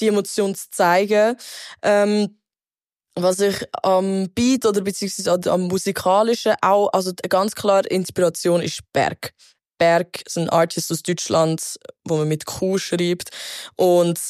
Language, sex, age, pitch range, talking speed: German, female, 20-39, 170-220 Hz, 140 wpm